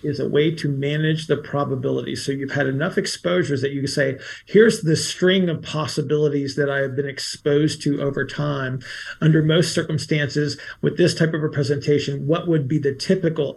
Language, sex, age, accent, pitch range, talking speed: English, male, 40-59, American, 145-165 Hz, 190 wpm